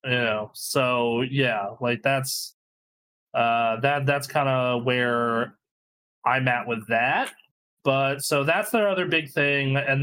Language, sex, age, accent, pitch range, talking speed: English, male, 20-39, American, 120-150 Hz, 145 wpm